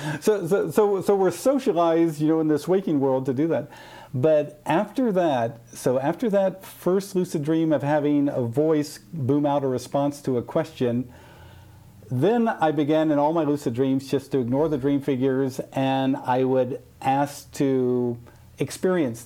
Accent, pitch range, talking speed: American, 135-190 Hz, 170 wpm